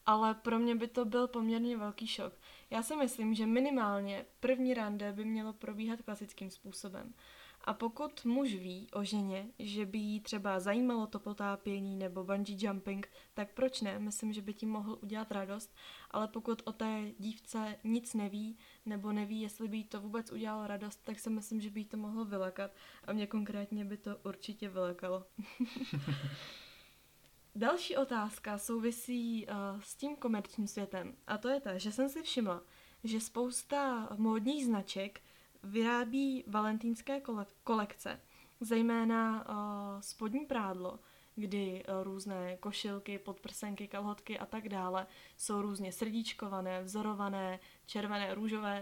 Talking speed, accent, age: 145 wpm, native, 20-39